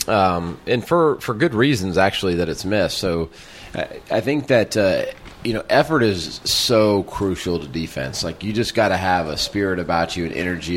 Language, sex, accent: English, male, American